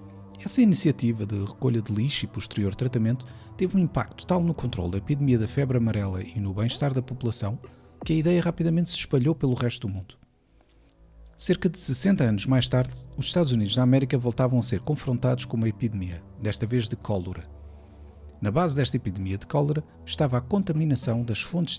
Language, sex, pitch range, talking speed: Portuguese, male, 105-135 Hz, 185 wpm